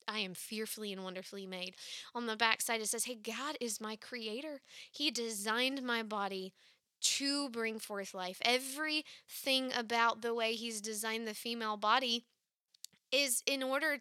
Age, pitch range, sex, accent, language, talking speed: 20-39, 210-270 Hz, female, American, English, 155 wpm